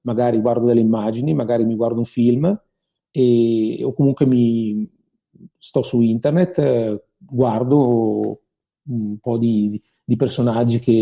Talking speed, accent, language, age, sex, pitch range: 130 wpm, native, Italian, 40-59, male, 115-145 Hz